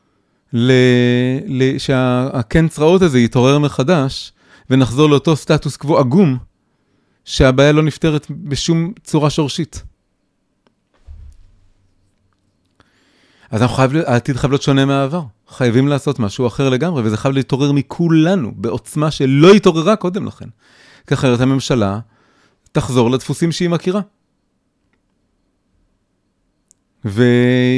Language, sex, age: Hebrew, male, 30-49